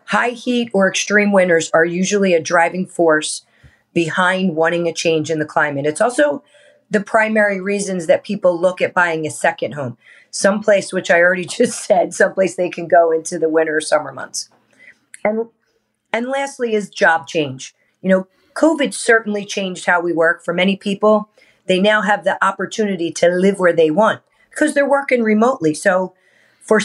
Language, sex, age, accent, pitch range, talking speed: English, female, 40-59, American, 165-210 Hz, 175 wpm